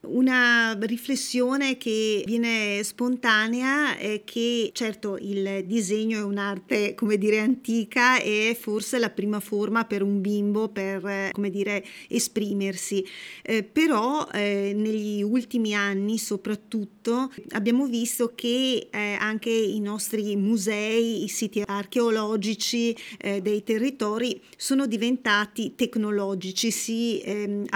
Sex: female